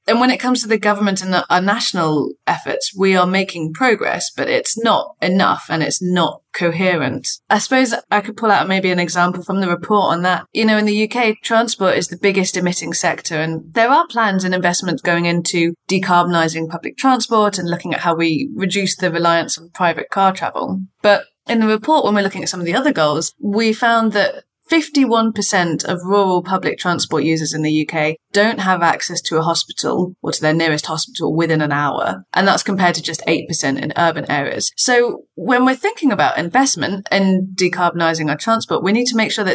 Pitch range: 170-220 Hz